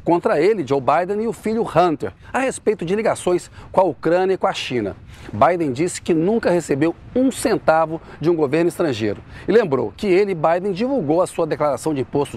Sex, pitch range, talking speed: male, 155-215 Hz, 200 wpm